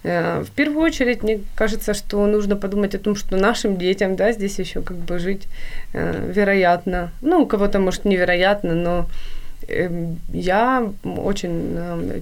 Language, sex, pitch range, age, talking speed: Ukrainian, female, 180-215 Hz, 20-39, 135 wpm